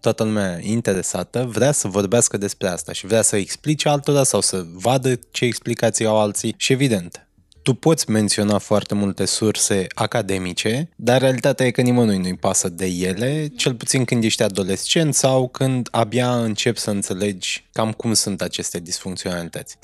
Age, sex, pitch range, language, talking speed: 20-39, male, 100-120 Hz, Romanian, 165 wpm